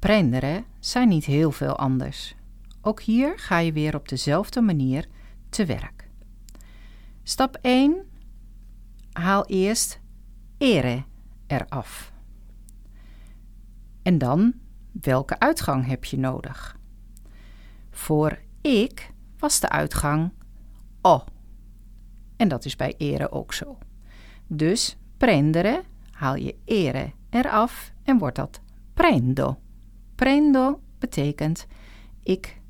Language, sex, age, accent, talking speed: Dutch, female, 50-69, Dutch, 100 wpm